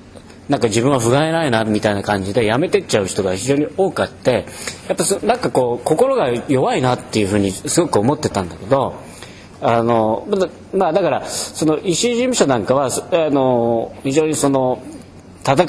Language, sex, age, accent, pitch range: Japanese, male, 40-59, native, 100-135 Hz